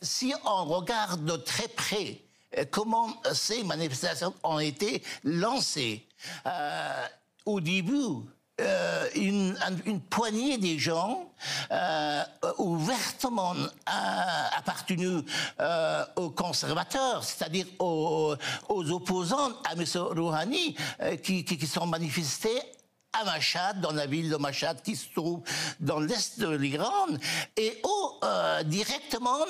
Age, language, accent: 60-79, French, French